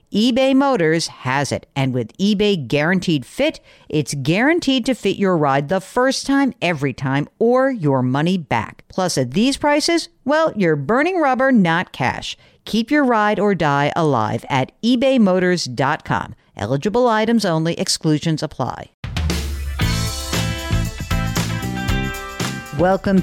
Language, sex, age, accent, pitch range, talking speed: English, female, 50-69, American, 150-215 Hz, 125 wpm